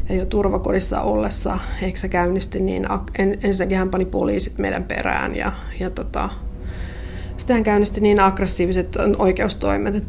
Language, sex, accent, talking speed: Finnish, female, native, 135 wpm